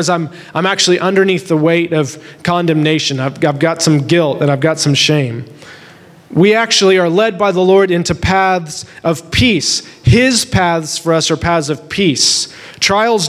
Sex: male